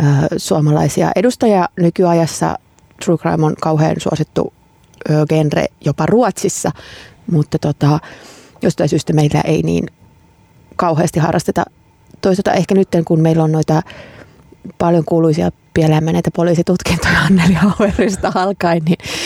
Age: 30-49